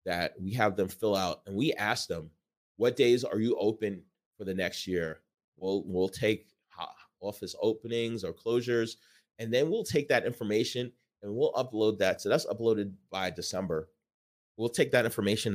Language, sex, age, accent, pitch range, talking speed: English, male, 30-49, American, 90-115 Hz, 175 wpm